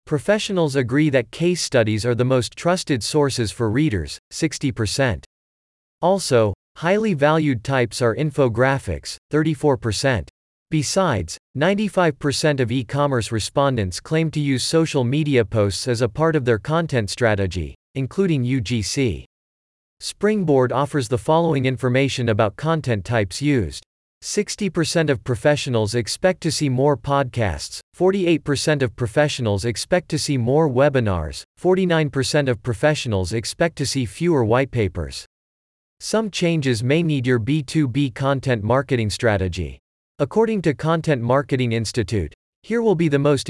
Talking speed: 130 wpm